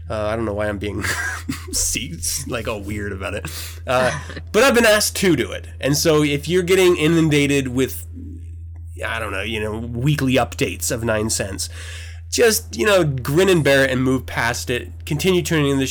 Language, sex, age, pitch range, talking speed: English, male, 20-39, 85-130 Hz, 195 wpm